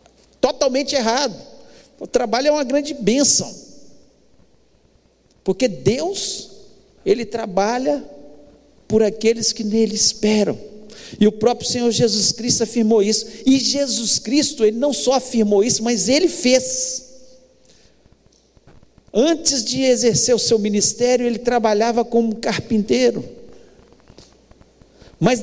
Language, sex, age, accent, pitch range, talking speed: Portuguese, male, 50-69, Brazilian, 215-265 Hz, 110 wpm